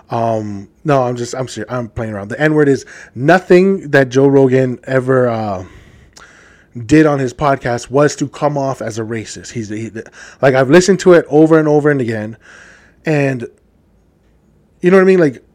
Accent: American